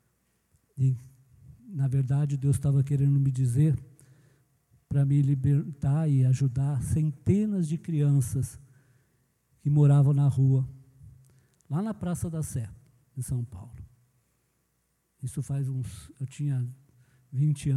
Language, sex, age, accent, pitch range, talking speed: Portuguese, male, 50-69, Brazilian, 125-145 Hz, 115 wpm